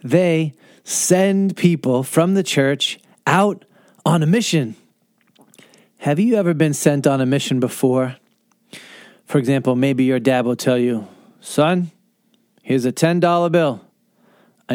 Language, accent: English, American